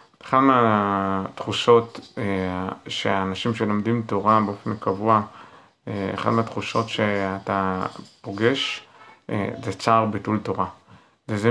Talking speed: 85 wpm